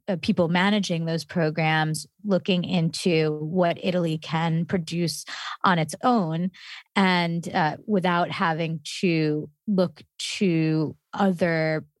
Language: English